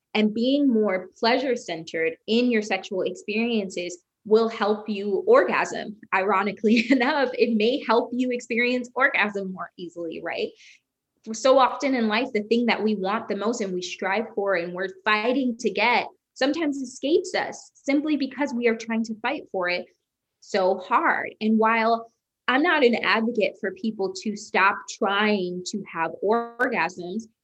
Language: English